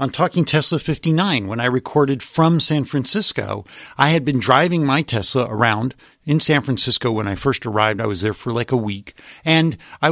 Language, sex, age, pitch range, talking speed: English, male, 40-59, 130-170 Hz, 195 wpm